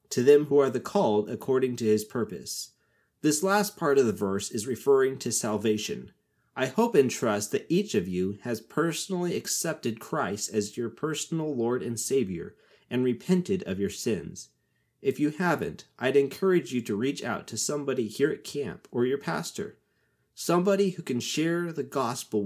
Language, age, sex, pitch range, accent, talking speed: English, 30-49, male, 105-145 Hz, American, 175 wpm